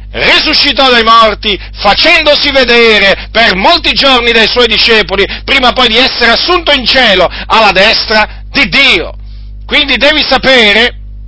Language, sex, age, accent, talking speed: Italian, male, 50-69, native, 135 wpm